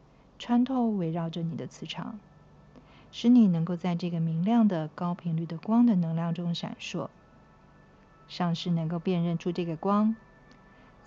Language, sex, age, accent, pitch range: Chinese, female, 50-69, native, 155-195 Hz